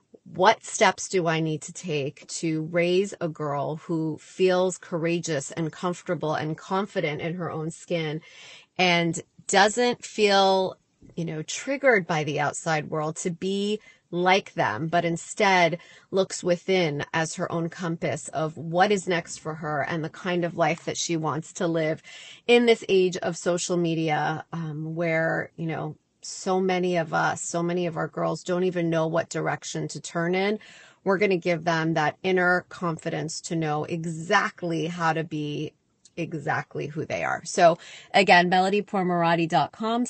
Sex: female